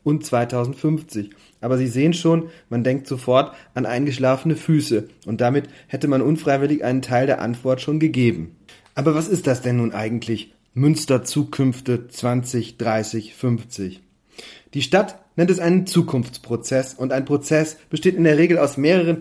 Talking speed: 155 wpm